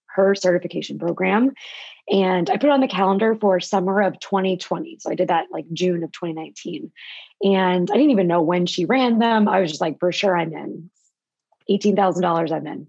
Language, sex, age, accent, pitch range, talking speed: English, female, 20-39, American, 175-215 Hz, 195 wpm